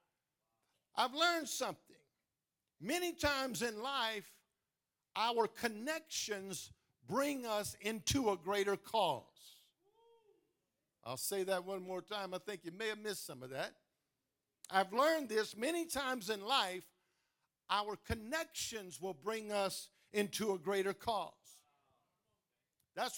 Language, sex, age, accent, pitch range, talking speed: English, male, 50-69, American, 205-295 Hz, 120 wpm